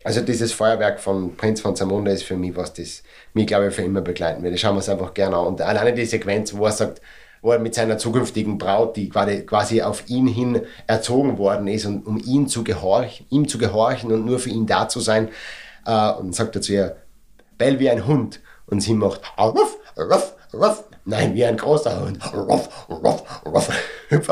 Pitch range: 100-140 Hz